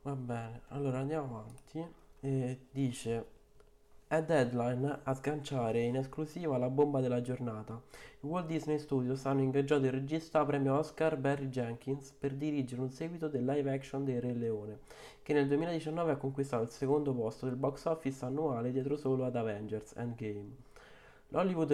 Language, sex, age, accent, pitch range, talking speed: Italian, male, 20-39, native, 125-145 Hz, 155 wpm